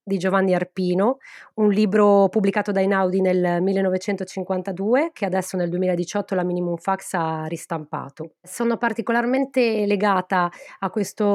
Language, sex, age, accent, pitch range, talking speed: Italian, female, 20-39, native, 180-205 Hz, 125 wpm